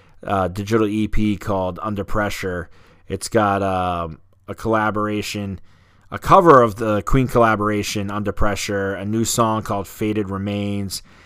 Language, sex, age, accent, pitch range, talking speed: English, male, 30-49, American, 95-115 Hz, 135 wpm